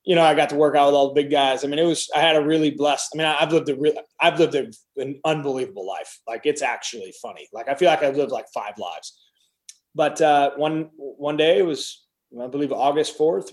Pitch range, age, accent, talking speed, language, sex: 140-160 Hz, 20-39, American, 255 wpm, English, male